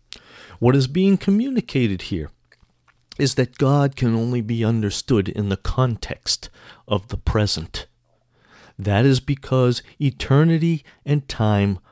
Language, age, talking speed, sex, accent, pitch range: English, 50-69, 120 wpm, male, American, 110-160 Hz